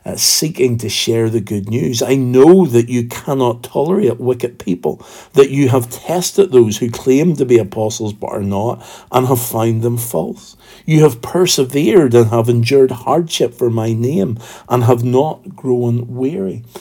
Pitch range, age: 105-135 Hz, 50-69